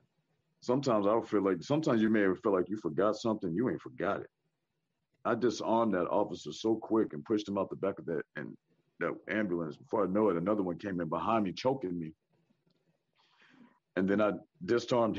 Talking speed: 200 wpm